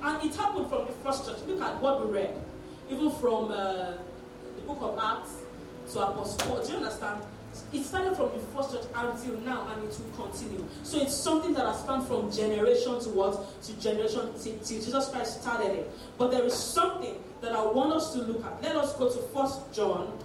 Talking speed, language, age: 210 wpm, English, 40-59